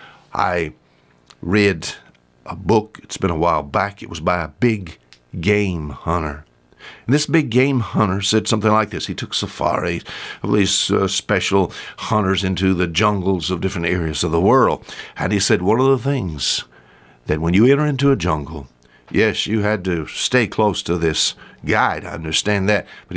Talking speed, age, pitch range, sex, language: 180 wpm, 60-79, 90-145 Hz, male, English